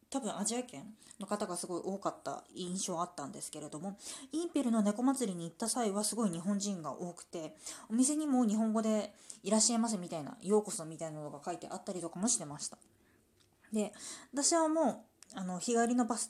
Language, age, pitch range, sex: Japanese, 20-39, 170-245 Hz, female